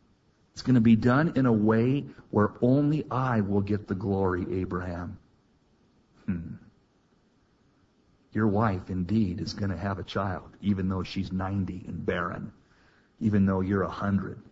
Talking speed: 150 wpm